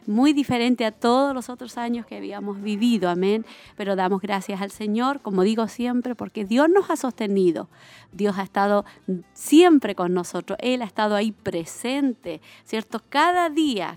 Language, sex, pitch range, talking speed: Spanish, female, 205-260 Hz, 165 wpm